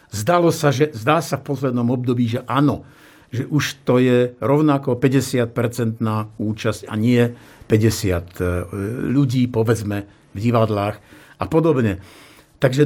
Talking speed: 125 wpm